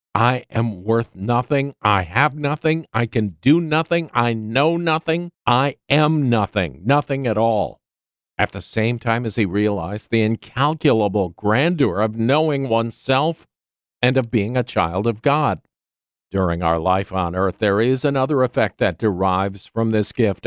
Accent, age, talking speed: American, 50-69, 160 wpm